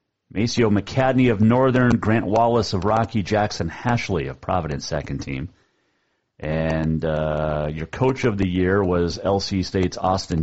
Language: English